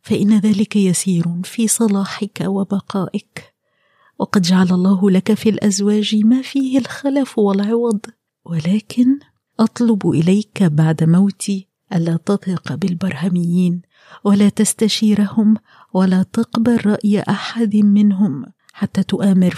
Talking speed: 100 wpm